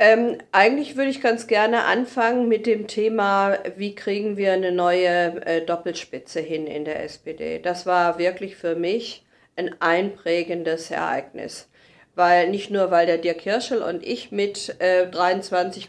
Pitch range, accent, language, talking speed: 180-220 Hz, German, German, 155 wpm